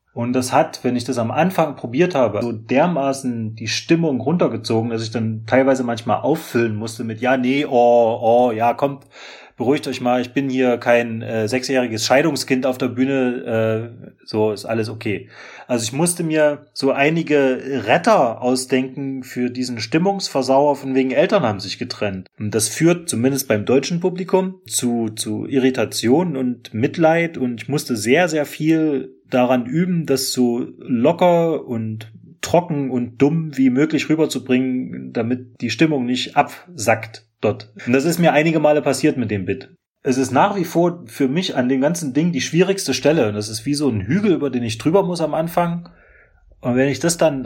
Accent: German